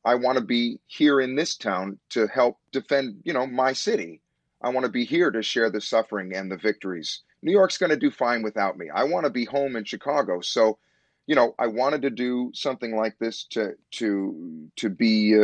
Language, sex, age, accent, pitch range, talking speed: English, male, 30-49, American, 110-135 Hz, 220 wpm